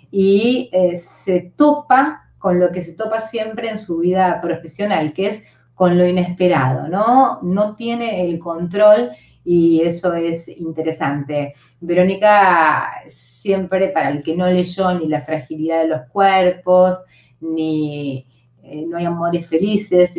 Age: 20-39